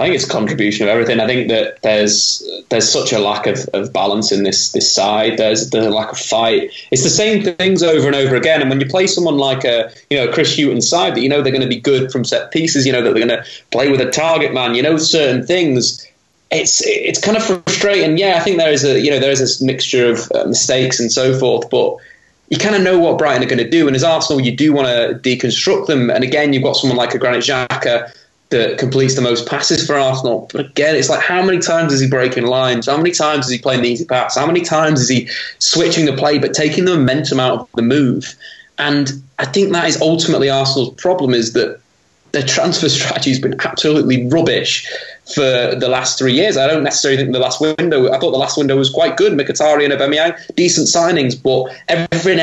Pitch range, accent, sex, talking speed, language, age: 125-165 Hz, British, male, 245 wpm, English, 20-39